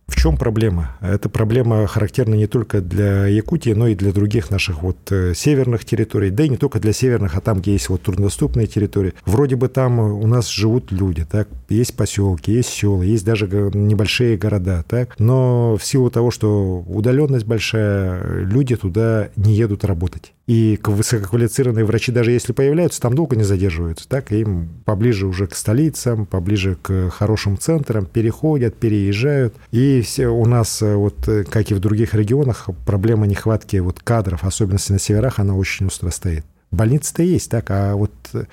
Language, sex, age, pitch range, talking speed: Russian, male, 50-69, 100-120 Hz, 165 wpm